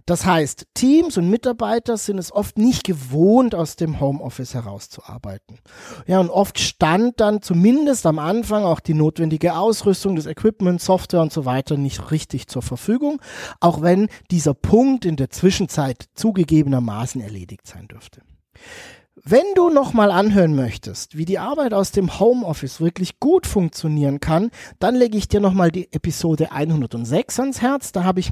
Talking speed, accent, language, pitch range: 160 wpm, German, German, 150-210 Hz